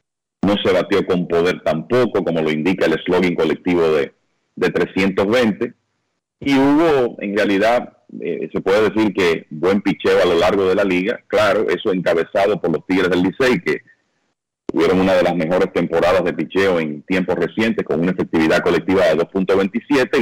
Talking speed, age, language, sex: 170 wpm, 40-59, Spanish, male